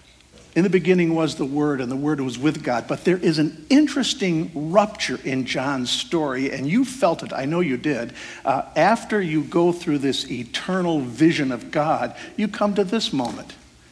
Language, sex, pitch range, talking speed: English, male, 145-205 Hz, 190 wpm